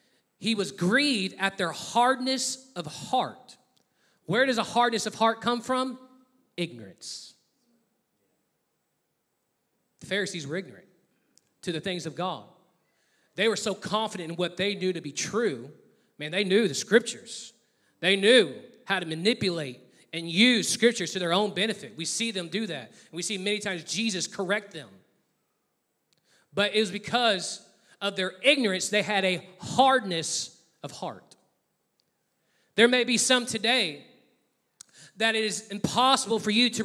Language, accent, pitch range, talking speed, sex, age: English, American, 185-240 Hz, 150 wpm, male, 30-49